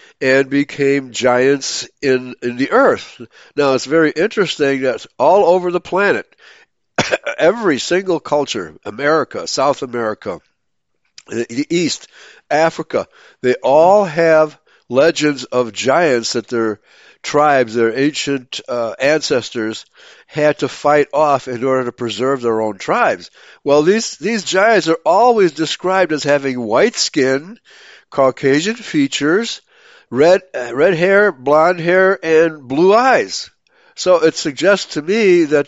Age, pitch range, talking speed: 60-79, 130-170 Hz, 130 wpm